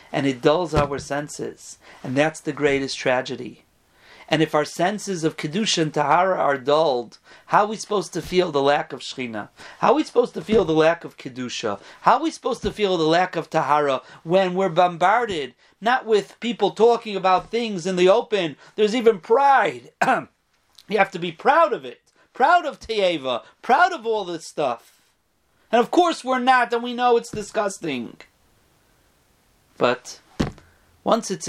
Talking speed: 175 wpm